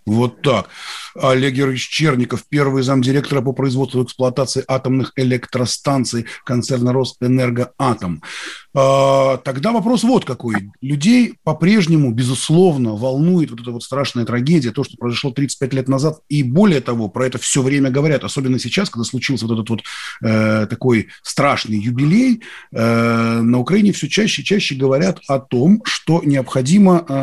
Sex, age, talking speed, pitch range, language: male, 30-49, 140 wpm, 130-165 Hz, Russian